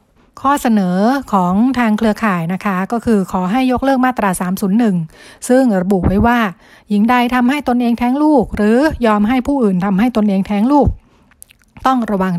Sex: female